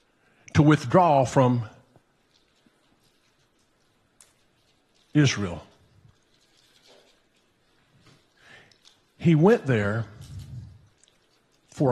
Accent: American